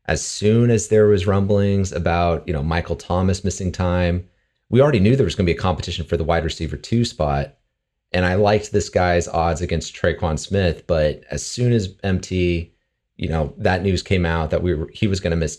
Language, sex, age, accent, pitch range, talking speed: English, male, 30-49, American, 80-95 Hz, 220 wpm